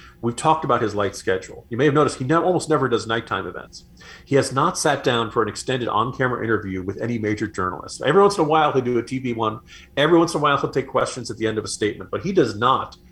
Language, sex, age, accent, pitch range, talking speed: English, male, 40-59, American, 100-140 Hz, 270 wpm